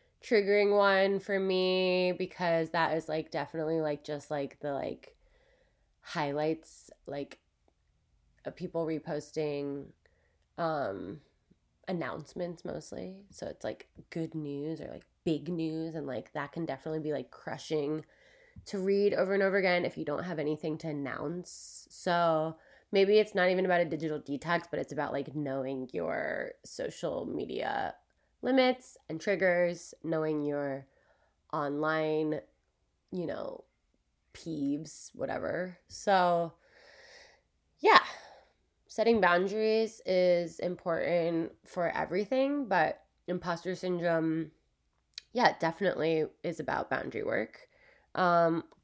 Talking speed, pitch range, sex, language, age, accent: 120 wpm, 155-195 Hz, female, English, 20-39, American